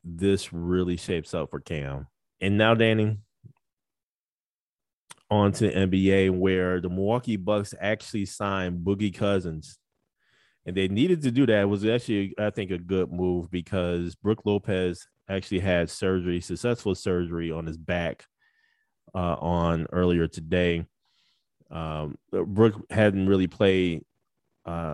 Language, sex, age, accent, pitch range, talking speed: English, male, 20-39, American, 90-105 Hz, 135 wpm